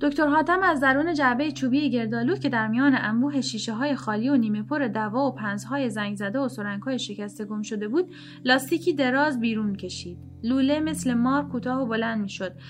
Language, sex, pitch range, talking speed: Persian, female, 215-280 Hz, 195 wpm